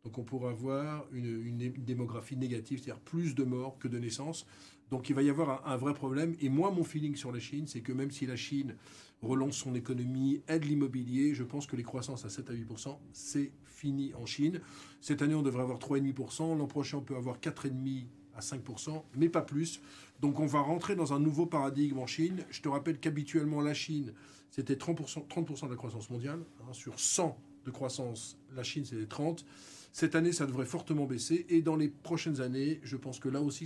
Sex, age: male, 40-59